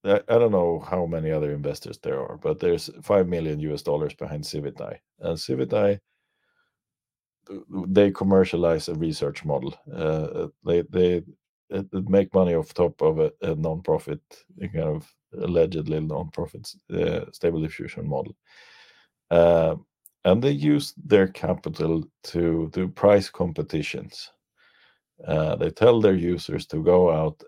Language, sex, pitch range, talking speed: English, male, 80-95 Hz, 135 wpm